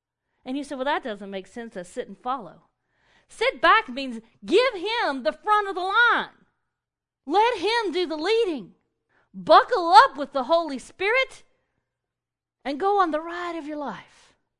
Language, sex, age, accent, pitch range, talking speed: English, female, 40-59, American, 220-365 Hz, 170 wpm